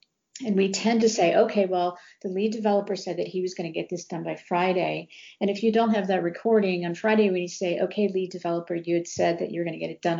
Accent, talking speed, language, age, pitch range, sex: American, 265 wpm, English, 50-69, 170-205 Hz, female